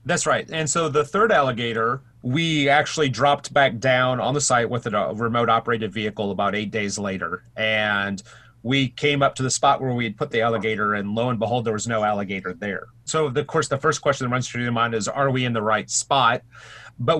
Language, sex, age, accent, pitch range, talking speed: English, male, 30-49, American, 110-140 Hz, 230 wpm